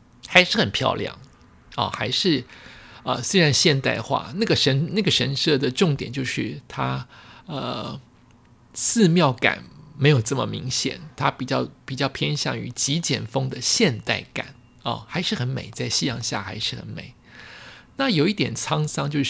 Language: Chinese